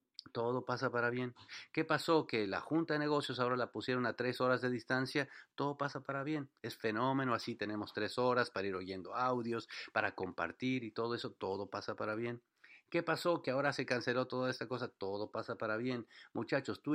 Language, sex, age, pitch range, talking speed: English, male, 50-69, 115-145 Hz, 200 wpm